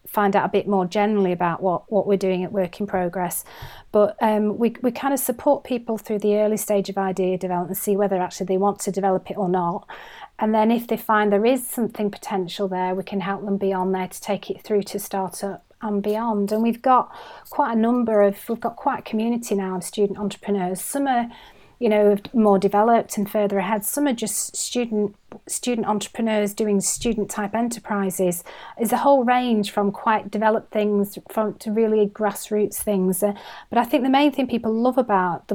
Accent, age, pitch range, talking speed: British, 30-49, 195-225 Hz, 210 wpm